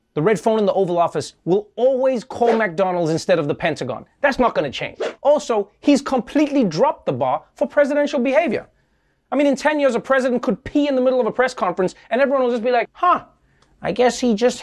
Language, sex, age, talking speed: English, male, 30-49, 225 wpm